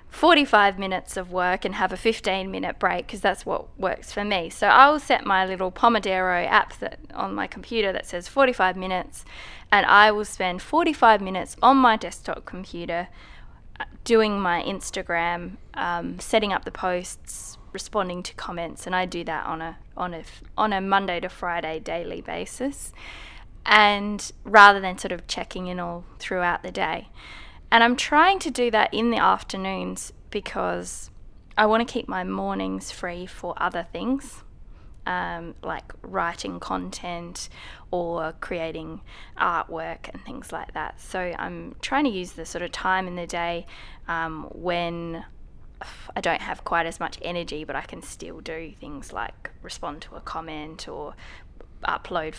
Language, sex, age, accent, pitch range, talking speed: English, female, 10-29, Australian, 165-205 Hz, 160 wpm